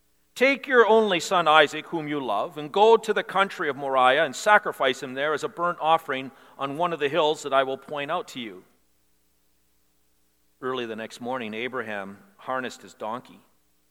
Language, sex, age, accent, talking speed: English, male, 40-59, American, 185 wpm